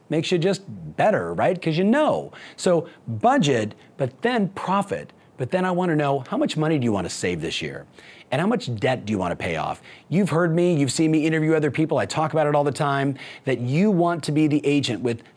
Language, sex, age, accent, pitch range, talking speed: English, male, 30-49, American, 135-175 Hz, 245 wpm